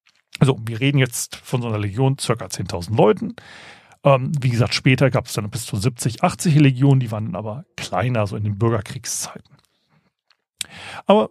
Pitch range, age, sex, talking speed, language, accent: 120-170 Hz, 40-59, male, 175 wpm, German, German